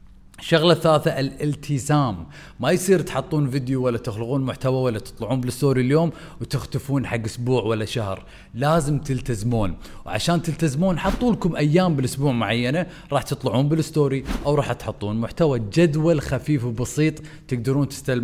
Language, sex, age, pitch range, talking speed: Arabic, male, 30-49, 120-150 Hz, 125 wpm